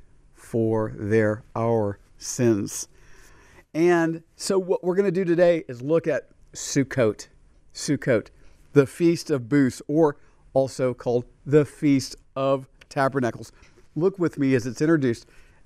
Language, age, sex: English, 50-69, male